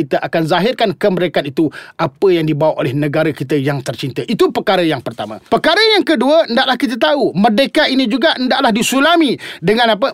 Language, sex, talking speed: Malay, male, 180 wpm